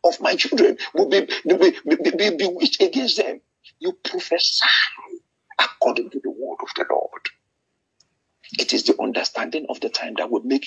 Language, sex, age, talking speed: English, male, 50-69, 175 wpm